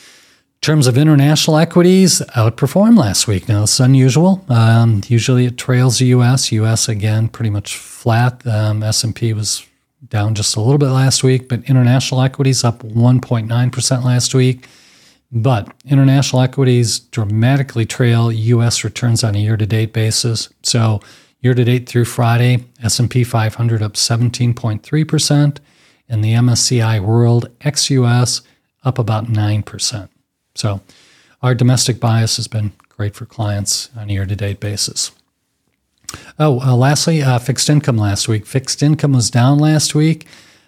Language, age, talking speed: English, 40-59, 140 wpm